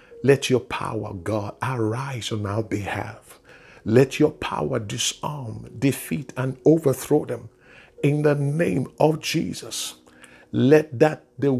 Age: 60-79